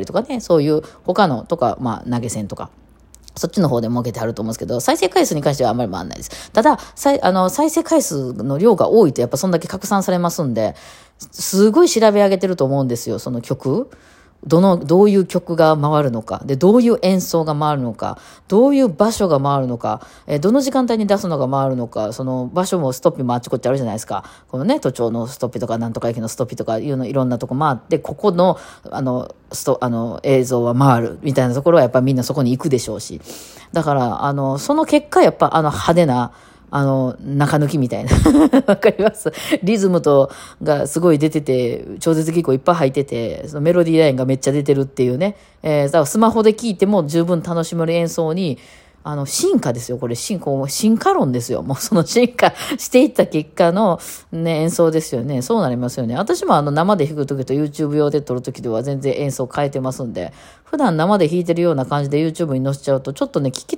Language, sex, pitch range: Japanese, female, 130-185 Hz